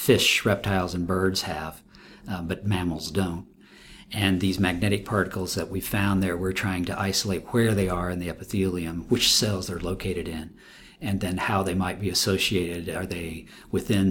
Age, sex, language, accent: 50-69, male, English, American